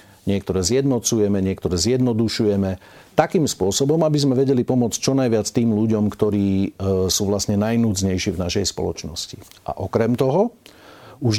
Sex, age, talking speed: male, 40-59, 130 wpm